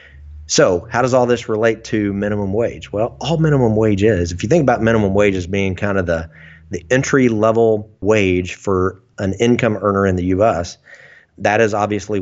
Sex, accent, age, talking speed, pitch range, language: male, American, 30-49, 190 wpm, 95-115 Hz, English